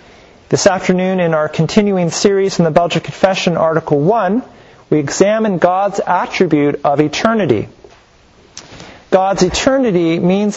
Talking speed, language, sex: 120 wpm, English, male